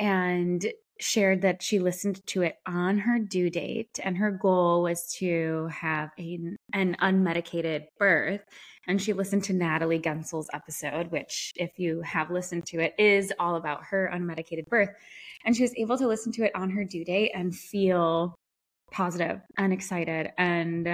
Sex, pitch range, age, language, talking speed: female, 175-225 Hz, 20-39, English, 170 wpm